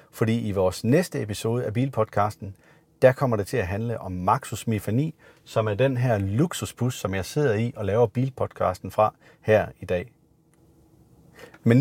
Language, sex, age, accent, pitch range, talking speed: Danish, male, 40-59, native, 105-140 Hz, 170 wpm